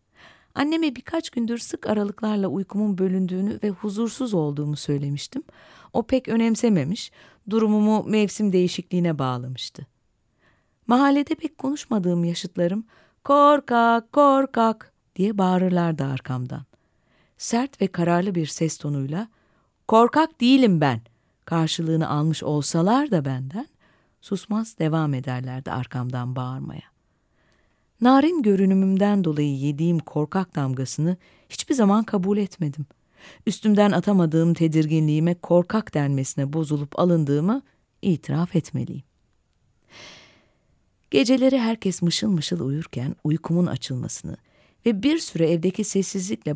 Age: 40-59